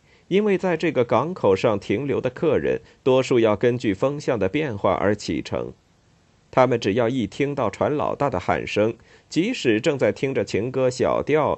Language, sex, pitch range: Chinese, male, 120-195 Hz